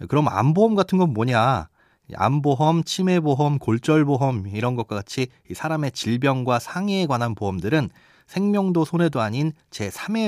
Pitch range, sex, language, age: 115-175 Hz, male, Korean, 30-49